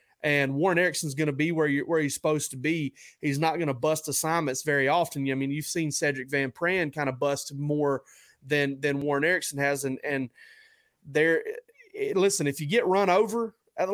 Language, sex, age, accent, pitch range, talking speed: English, male, 30-49, American, 135-160 Hz, 200 wpm